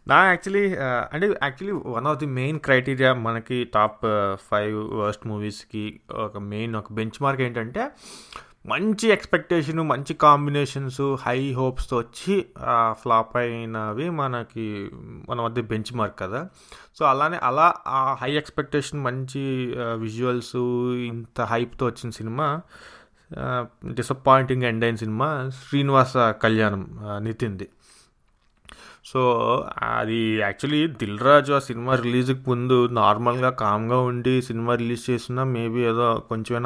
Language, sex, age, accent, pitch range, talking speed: English, male, 20-39, Indian, 115-140 Hz, 110 wpm